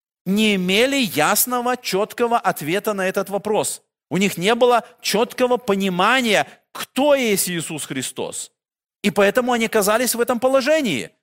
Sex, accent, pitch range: male, native, 185-230 Hz